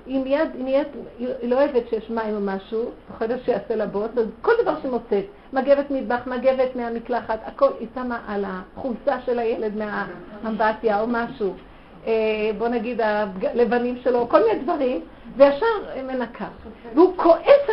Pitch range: 210-265 Hz